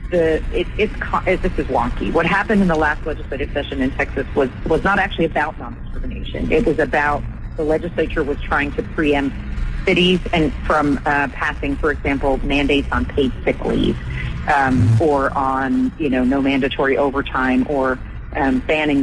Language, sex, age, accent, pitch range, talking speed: English, female, 40-59, American, 130-155 Hz, 165 wpm